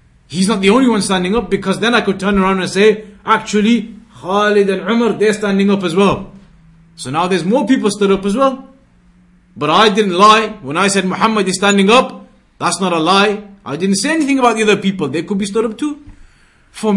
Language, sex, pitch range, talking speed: English, male, 190-235 Hz, 225 wpm